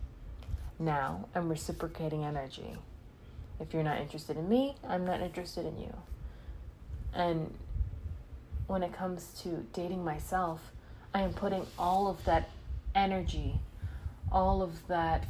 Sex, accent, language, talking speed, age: female, American, English, 125 wpm, 20-39